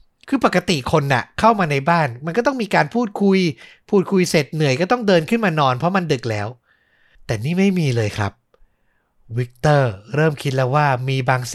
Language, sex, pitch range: Thai, male, 115-170 Hz